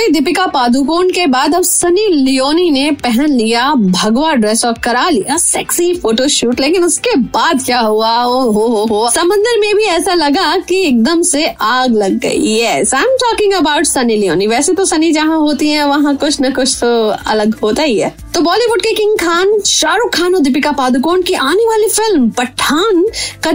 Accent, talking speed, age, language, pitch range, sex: native, 190 wpm, 20-39, Hindi, 240-355 Hz, female